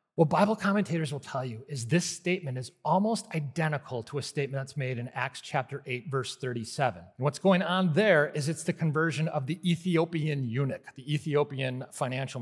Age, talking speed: 30-49, 185 wpm